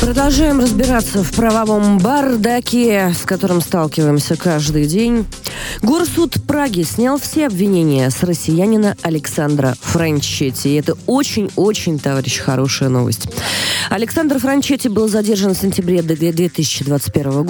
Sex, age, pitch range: female, 20-39, 130-200 Hz